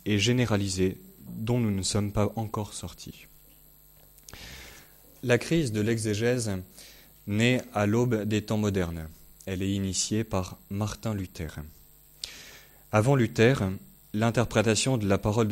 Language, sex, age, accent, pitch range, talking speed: French, male, 30-49, French, 95-120 Hz, 120 wpm